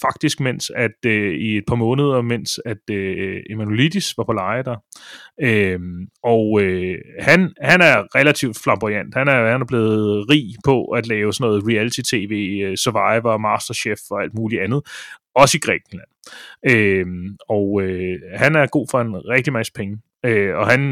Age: 30-49